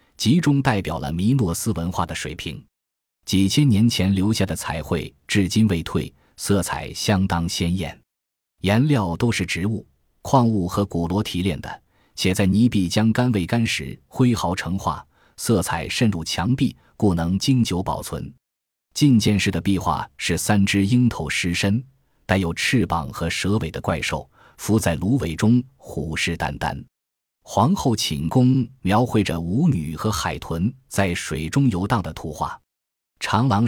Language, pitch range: Chinese, 85-115 Hz